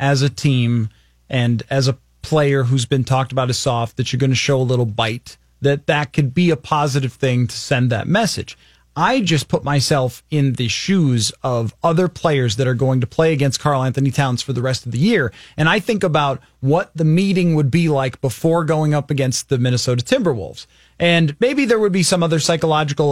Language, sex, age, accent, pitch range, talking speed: English, male, 30-49, American, 130-175 Hz, 215 wpm